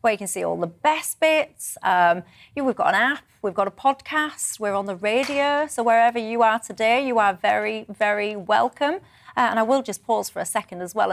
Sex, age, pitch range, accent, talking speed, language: female, 30-49, 200-250 Hz, British, 225 wpm, English